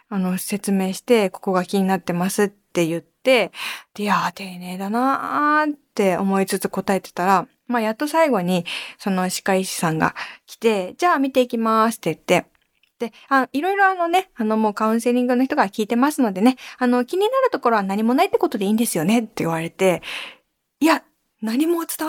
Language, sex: Japanese, female